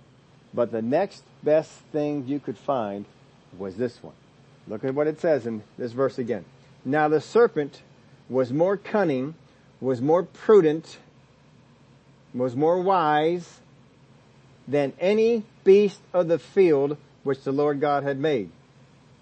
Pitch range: 135-190 Hz